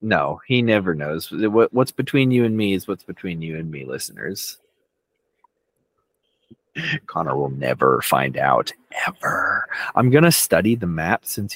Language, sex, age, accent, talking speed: English, male, 30-49, American, 145 wpm